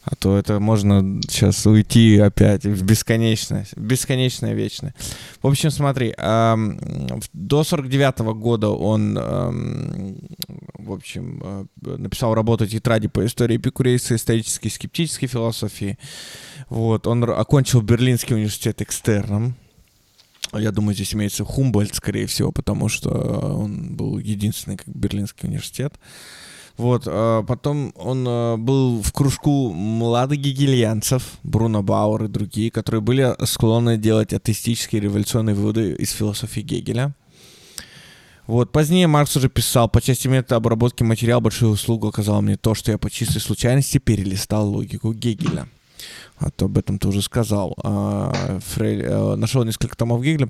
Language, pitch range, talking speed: Russian, 105-125 Hz, 130 wpm